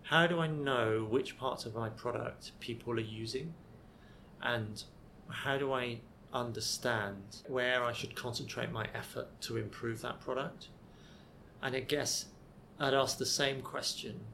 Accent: British